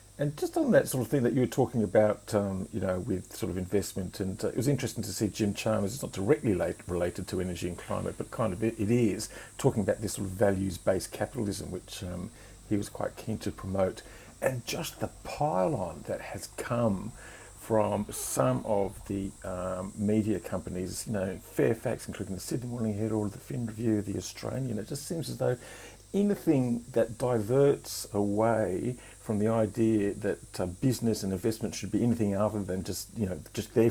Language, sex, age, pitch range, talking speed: English, male, 50-69, 95-110 Hz, 200 wpm